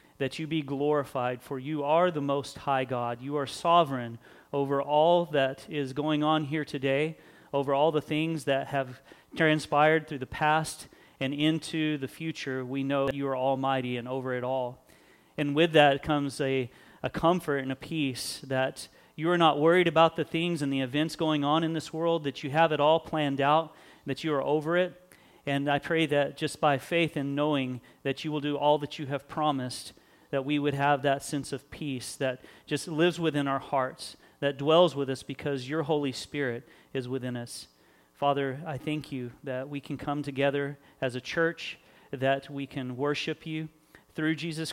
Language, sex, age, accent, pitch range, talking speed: English, male, 40-59, American, 130-155 Hz, 195 wpm